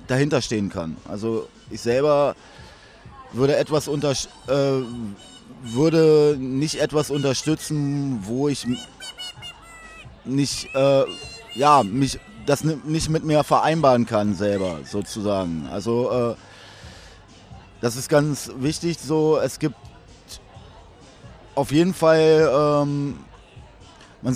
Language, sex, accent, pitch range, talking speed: English, male, German, 125-155 Hz, 105 wpm